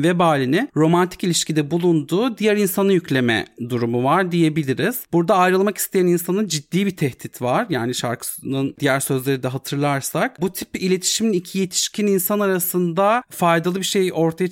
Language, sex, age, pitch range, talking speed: Turkish, male, 40-59, 130-180 Hz, 145 wpm